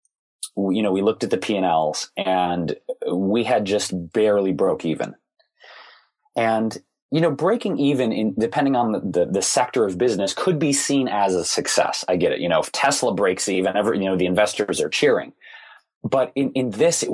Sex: male